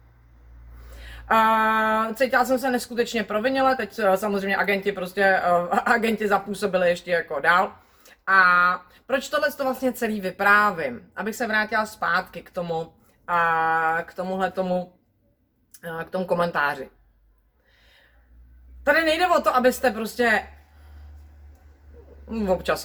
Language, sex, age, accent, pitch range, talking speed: Czech, female, 30-49, native, 180-240 Hz, 100 wpm